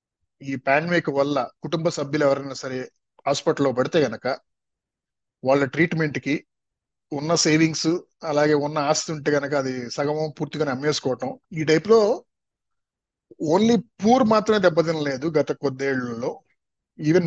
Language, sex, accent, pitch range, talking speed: Telugu, male, native, 145-195 Hz, 120 wpm